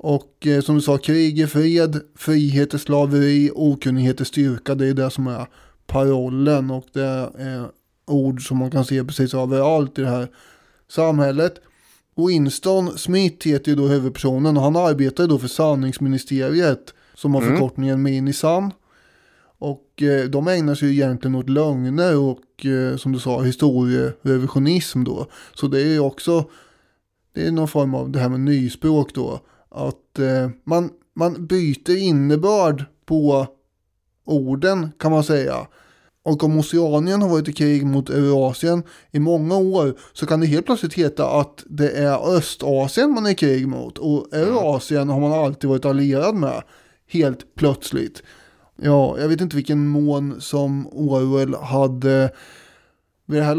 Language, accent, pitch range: English, Swedish, 135-155 Hz